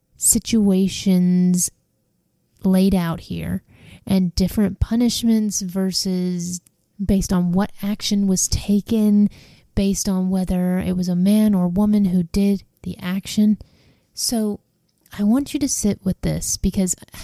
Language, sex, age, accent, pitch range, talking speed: English, female, 30-49, American, 185-220 Hz, 125 wpm